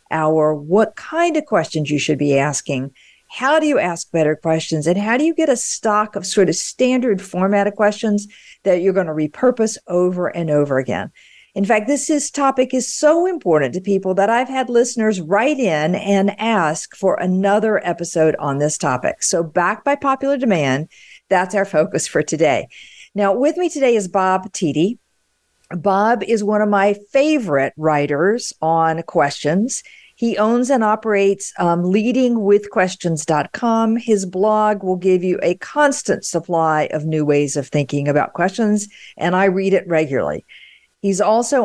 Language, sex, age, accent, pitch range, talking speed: English, female, 50-69, American, 160-225 Hz, 165 wpm